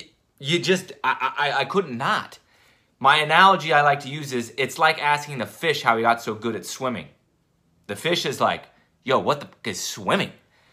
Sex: male